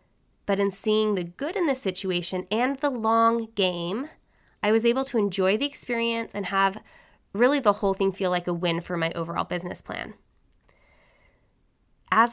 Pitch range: 180-215 Hz